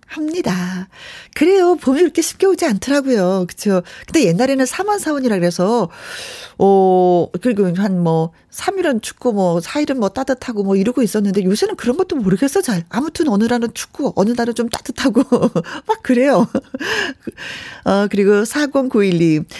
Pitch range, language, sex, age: 190-300 Hz, Korean, female, 40-59